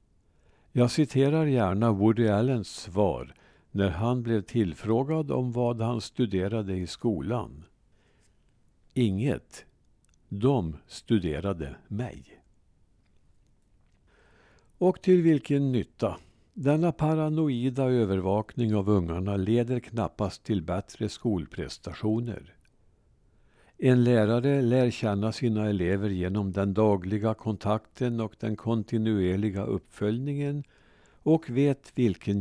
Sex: male